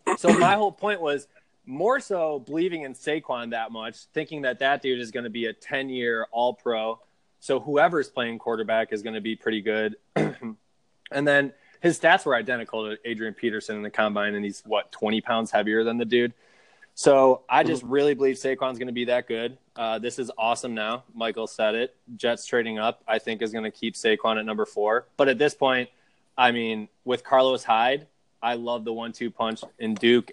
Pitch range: 110-130 Hz